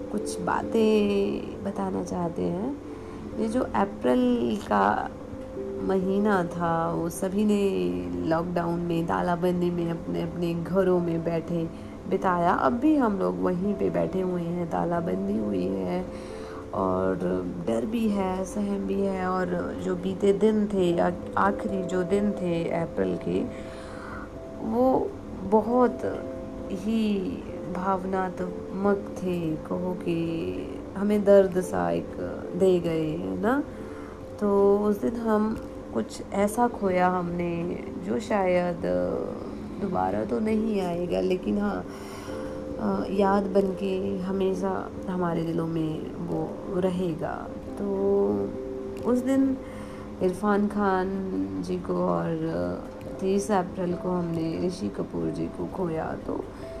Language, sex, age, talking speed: Punjabi, female, 30-49, 120 wpm